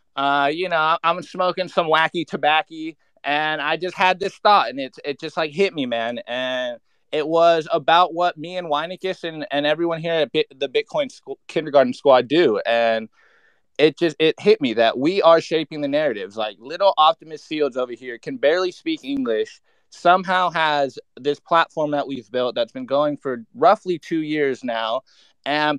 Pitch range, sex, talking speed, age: 145-180 Hz, male, 180 wpm, 20-39